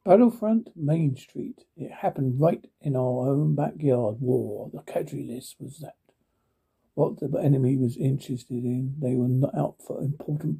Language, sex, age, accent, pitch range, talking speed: English, male, 60-79, British, 130-155 Hz, 160 wpm